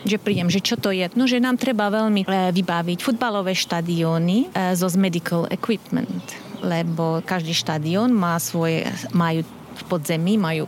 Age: 30-49